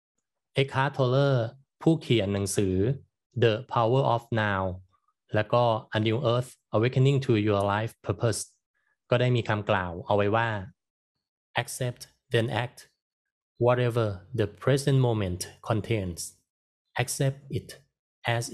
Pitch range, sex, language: 100-125 Hz, male, Thai